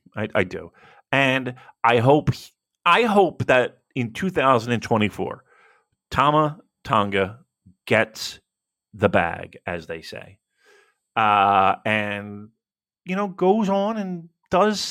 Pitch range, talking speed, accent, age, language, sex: 125-190 Hz, 110 wpm, American, 40-59, English, male